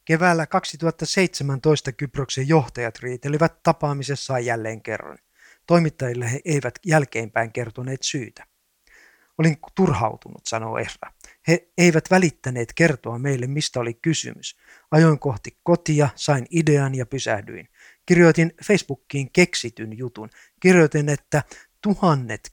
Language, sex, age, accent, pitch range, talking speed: Finnish, male, 50-69, native, 130-165 Hz, 105 wpm